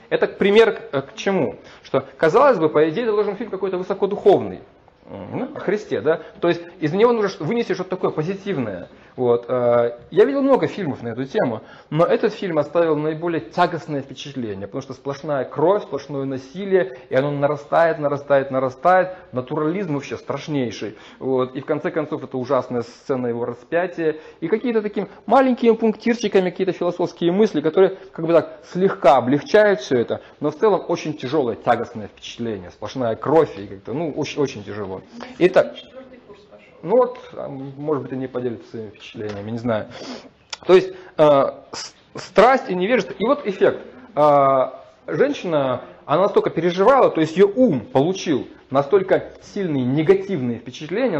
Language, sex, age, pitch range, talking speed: Russian, male, 20-39, 135-195 Hz, 150 wpm